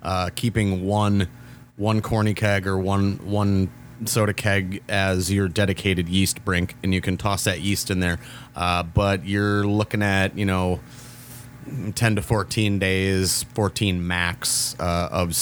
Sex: male